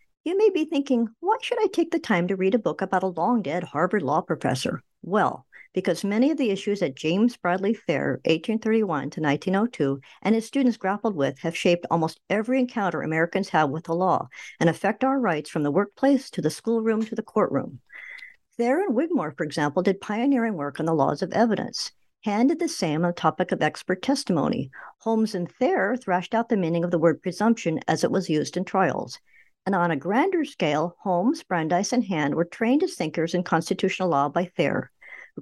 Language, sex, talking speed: English, male, 200 wpm